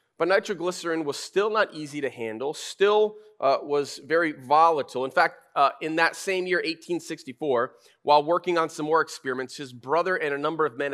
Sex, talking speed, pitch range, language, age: male, 185 wpm, 145-185 Hz, English, 30-49